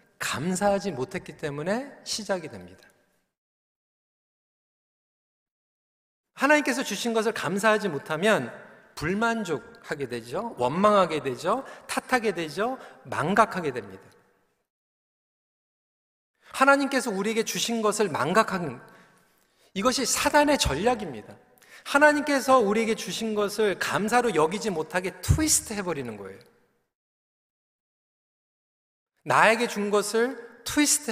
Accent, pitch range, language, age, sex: native, 185-240 Hz, Korean, 40-59, male